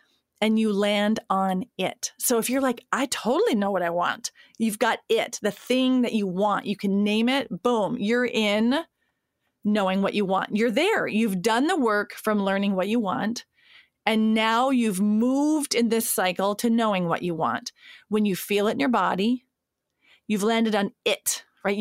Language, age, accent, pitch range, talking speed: English, 30-49, American, 200-240 Hz, 190 wpm